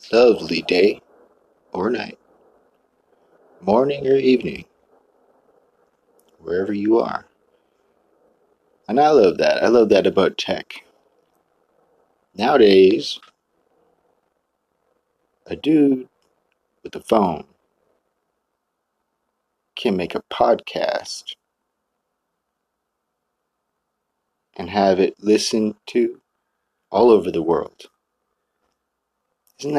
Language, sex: English, male